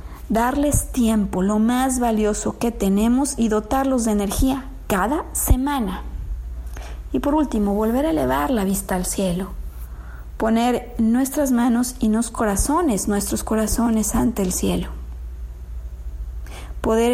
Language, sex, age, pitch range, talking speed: Spanish, female, 40-59, 195-255 Hz, 115 wpm